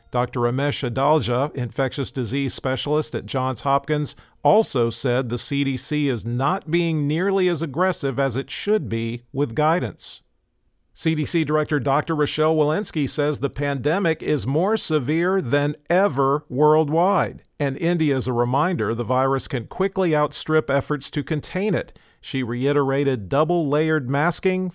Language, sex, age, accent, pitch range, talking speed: English, male, 50-69, American, 125-155 Hz, 140 wpm